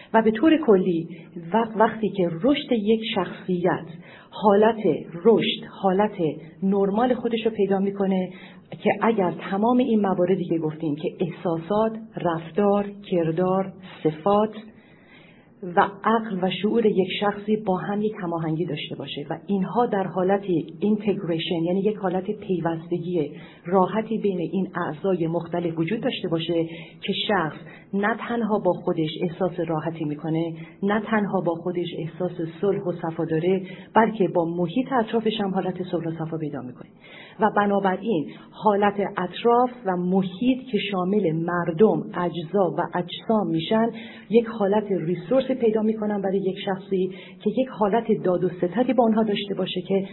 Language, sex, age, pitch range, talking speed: Persian, female, 40-59, 175-215 Hz, 140 wpm